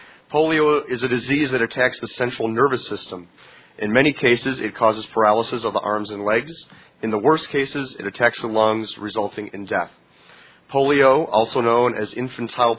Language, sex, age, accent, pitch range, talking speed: English, male, 30-49, American, 110-135 Hz, 175 wpm